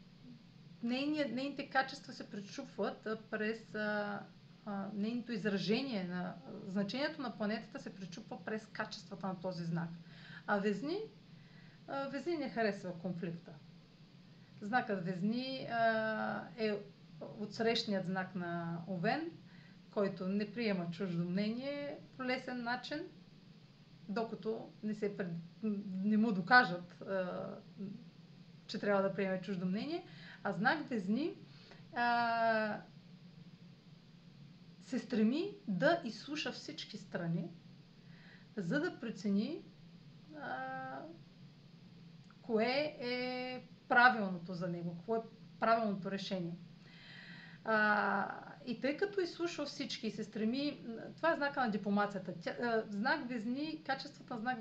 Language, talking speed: Bulgarian, 105 wpm